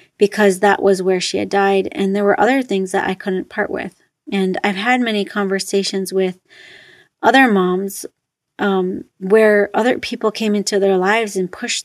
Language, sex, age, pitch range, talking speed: English, female, 30-49, 190-215 Hz, 175 wpm